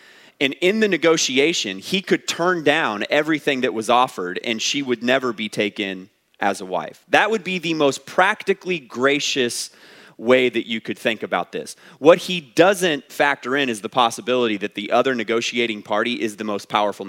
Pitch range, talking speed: 120-180 Hz, 185 wpm